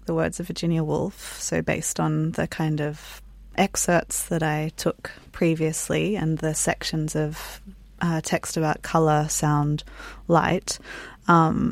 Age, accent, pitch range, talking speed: 20-39, Australian, 155-175 Hz, 140 wpm